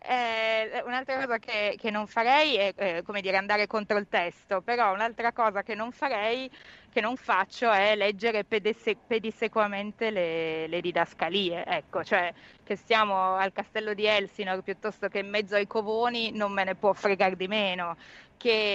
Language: Italian